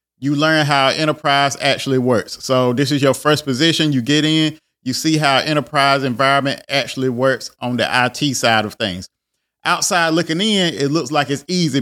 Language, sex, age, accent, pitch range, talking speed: English, male, 30-49, American, 130-150 Hz, 185 wpm